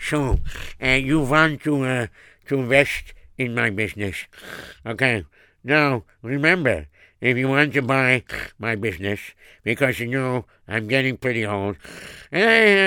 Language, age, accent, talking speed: English, 60-79, American, 135 wpm